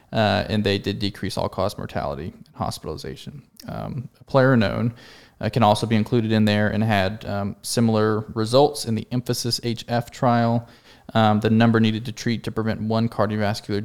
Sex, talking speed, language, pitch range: male, 175 wpm, English, 105-115 Hz